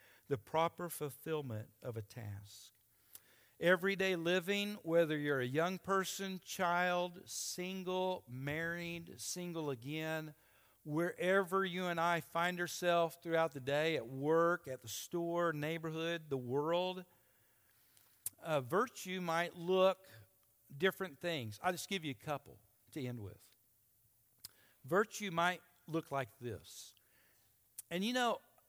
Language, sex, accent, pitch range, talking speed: English, male, American, 125-185 Hz, 120 wpm